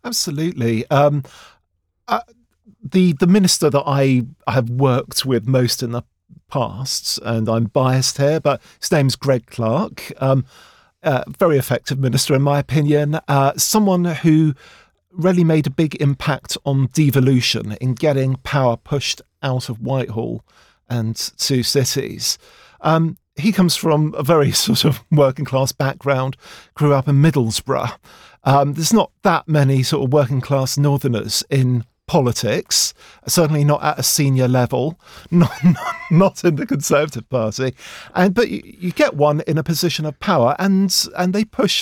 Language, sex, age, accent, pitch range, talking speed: English, male, 50-69, British, 125-160 Hz, 155 wpm